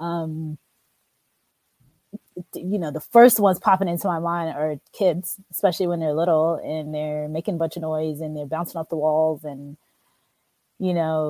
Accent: American